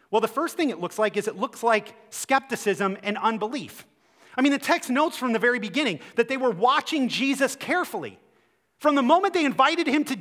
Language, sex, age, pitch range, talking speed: English, male, 30-49, 195-300 Hz, 210 wpm